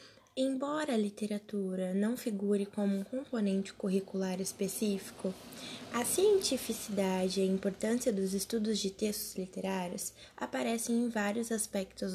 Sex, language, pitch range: female, Portuguese, 200-235 Hz